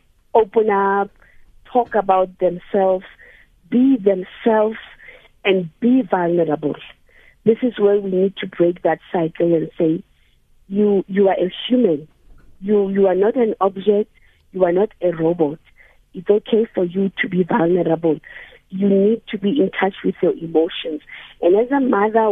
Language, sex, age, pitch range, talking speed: English, female, 40-59, 180-215 Hz, 155 wpm